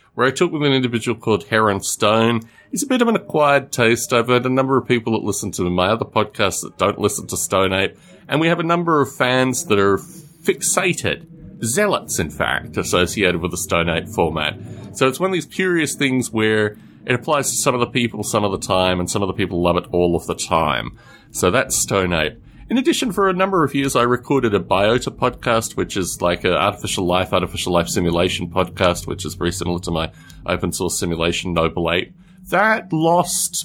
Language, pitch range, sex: English, 90-140 Hz, male